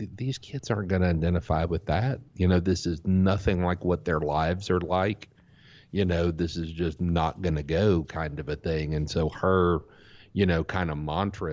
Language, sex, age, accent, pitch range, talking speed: English, male, 50-69, American, 75-90 Hz, 210 wpm